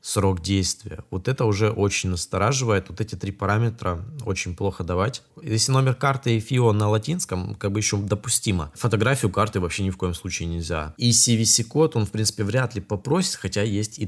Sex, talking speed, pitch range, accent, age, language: male, 190 wpm, 95-120 Hz, native, 20-39, Russian